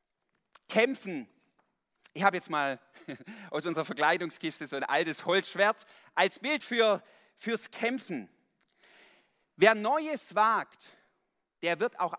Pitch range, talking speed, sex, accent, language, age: 150-225 Hz, 115 wpm, male, German, German, 40-59